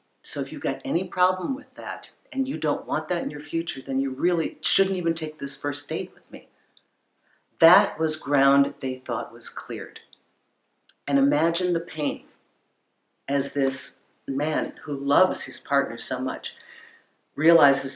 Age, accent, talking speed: 50-69, American, 160 wpm